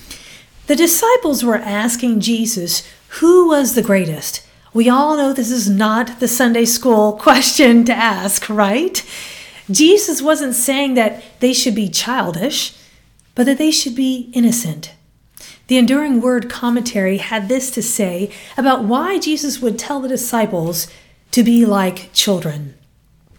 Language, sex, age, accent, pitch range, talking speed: English, female, 40-59, American, 195-265 Hz, 140 wpm